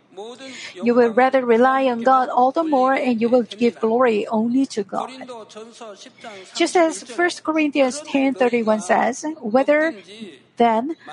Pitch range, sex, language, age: 230-275 Hz, female, Korean, 50-69